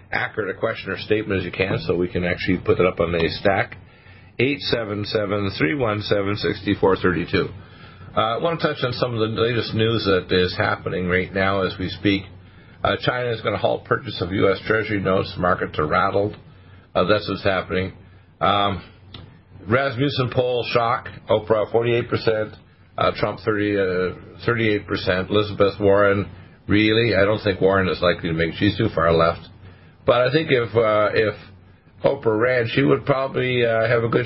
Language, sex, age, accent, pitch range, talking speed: English, male, 50-69, American, 95-115 Hz, 165 wpm